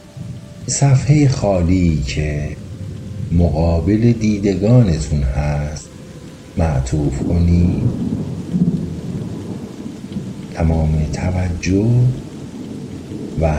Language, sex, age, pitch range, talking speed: Persian, male, 50-69, 75-100 Hz, 50 wpm